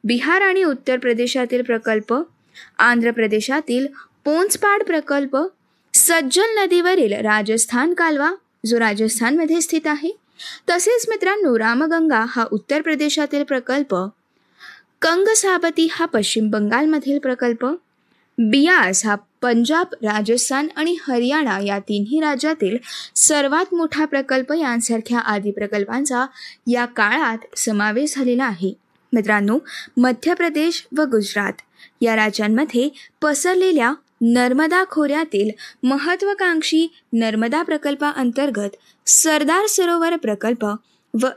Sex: female